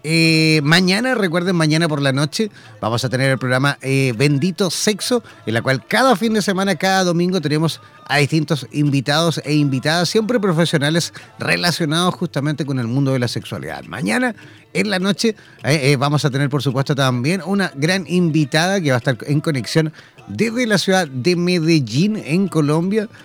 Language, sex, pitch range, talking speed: Spanish, male, 140-180 Hz, 175 wpm